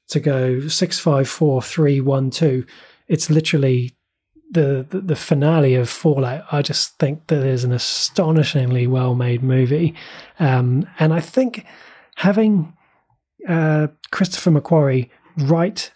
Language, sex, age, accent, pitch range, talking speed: English, male, 20-39, British, 130-160 Hz, 130 wpm